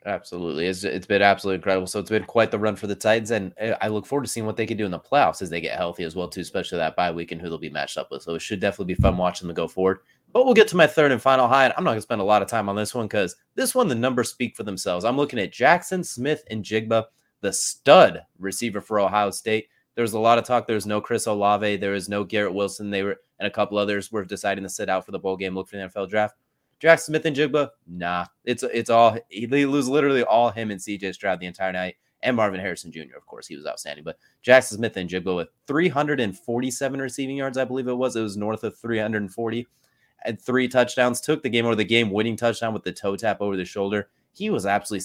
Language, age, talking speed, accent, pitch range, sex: English, 20-39, 265 wpm, American, 95-120 Hz, male